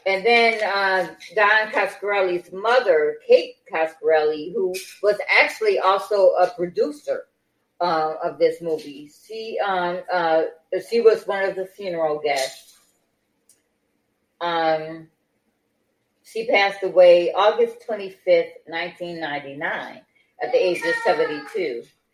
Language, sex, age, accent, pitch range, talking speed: English, female, 40-59, American, 170-270 Hz, 110 wpm